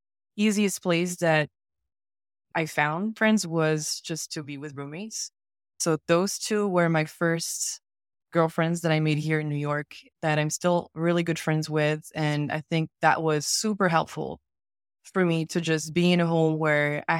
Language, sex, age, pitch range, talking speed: English, female, 20-39, 150-180 Hz, 175 wpm